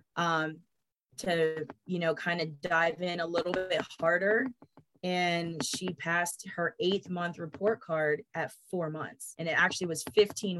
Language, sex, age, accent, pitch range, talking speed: English, female, 20-39, American, 150-175 Hz, 160 wpm